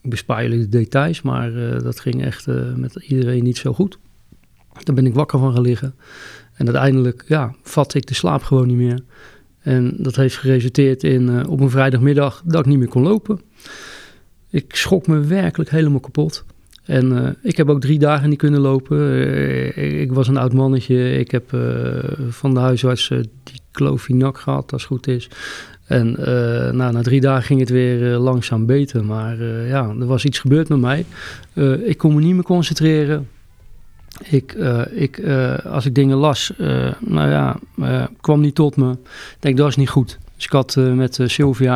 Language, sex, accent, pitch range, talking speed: Dutch, male, Dutch, 120-140 Hz, 205 wpm